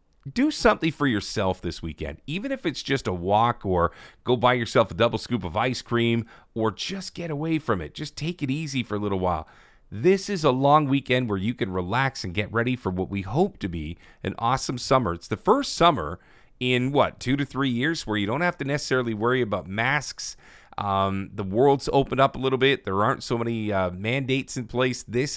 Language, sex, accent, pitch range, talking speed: English, male, American, 105-135 Hz, 220 wpm